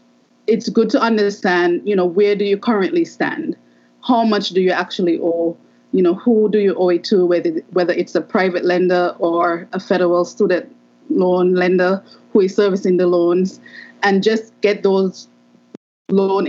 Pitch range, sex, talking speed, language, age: 175-205 Hz, female, 170 wpm, English, 20-39